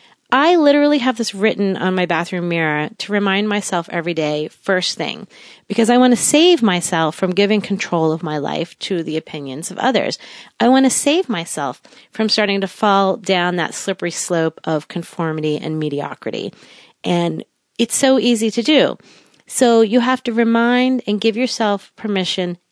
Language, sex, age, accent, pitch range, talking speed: English, female, 30-49, American, 175-240 Hz, 170 wpm